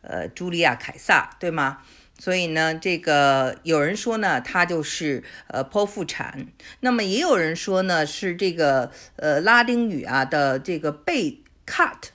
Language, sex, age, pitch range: Chinese, female, 50-69, 135-190 Hz